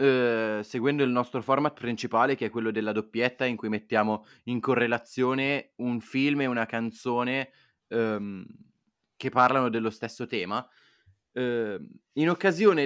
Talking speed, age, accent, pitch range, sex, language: 125 wpm, 20-39, native, 115-150 Hz, male, Italian